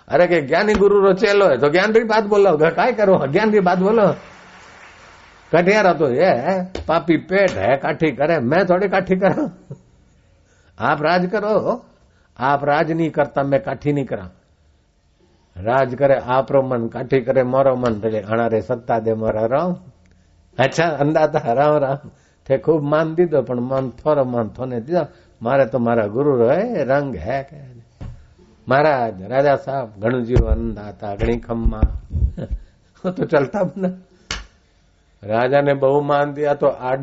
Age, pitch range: 60-79, 95-150 Hz